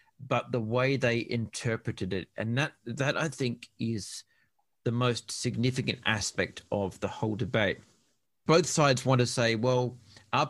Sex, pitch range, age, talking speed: male, 105-130 Hz, 40-59, 155 wpm